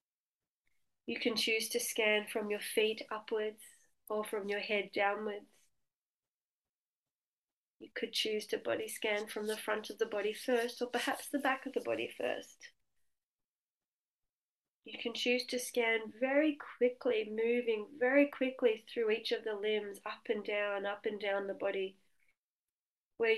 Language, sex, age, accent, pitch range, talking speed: English, female, 30-49, Australian, 205-250 Hz, 150 wpm